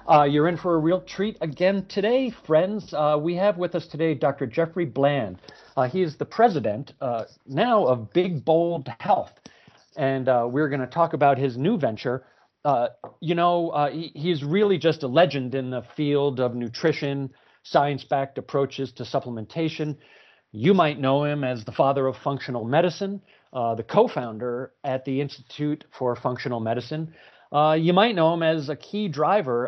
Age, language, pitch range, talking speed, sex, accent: 40-59, English, 125-165 Hz, 175 wpm, male, American